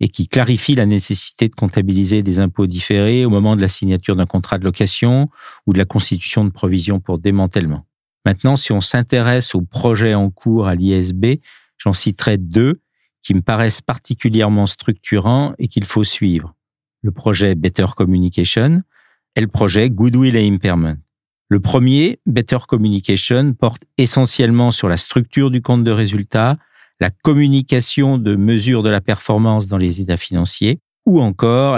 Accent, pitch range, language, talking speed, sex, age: French, 100-130 Hz, French, 160 wpm, male, 50-69